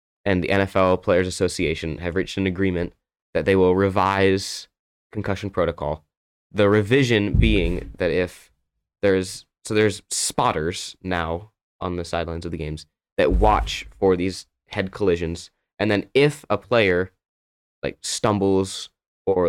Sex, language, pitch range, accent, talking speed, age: male, English, 85-105 Hz, American, 140 wpm, 20-39